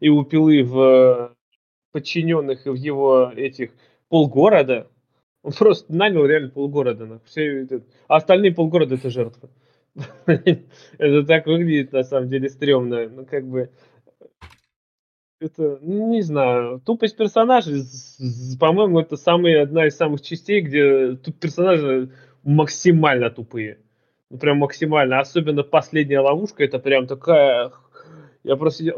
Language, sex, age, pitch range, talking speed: Russian, male, 20-39, 135-185 Hz, 115 wpm